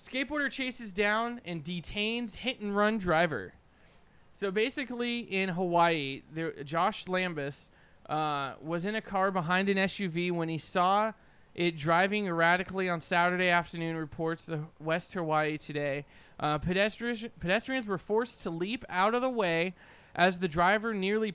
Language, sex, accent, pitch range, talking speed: English, male, American, 170-215 Hz, 140 wpm